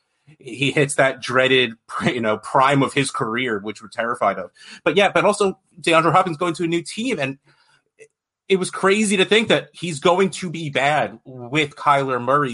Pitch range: 110-145 Hz